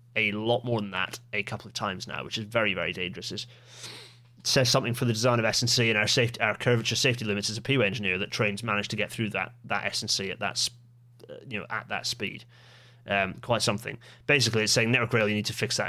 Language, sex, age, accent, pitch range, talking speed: English, male, 30-49, British, 110-130 Hz, 245 wpm